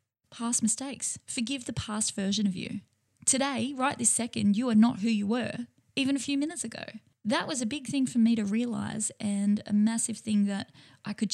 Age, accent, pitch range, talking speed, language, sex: 10-29, Australian, 205-250 Hz, 205 wpm, English, female